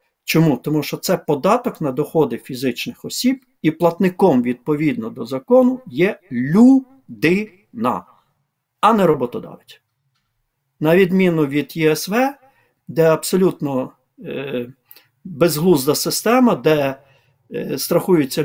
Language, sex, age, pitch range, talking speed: Ukrainian, male, 50-69, 135-185 Hz, 100 wpm